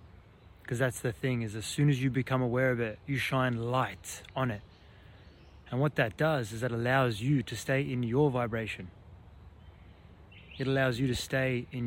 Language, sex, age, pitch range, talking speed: English, male, 20-39, 95-135 Hz, 185 wpm